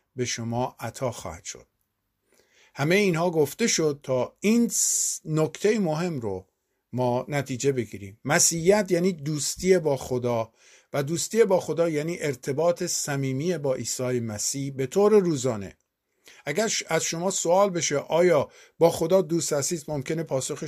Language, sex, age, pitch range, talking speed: Persian, male, 50-69, 125-165 Hz, 135 wpm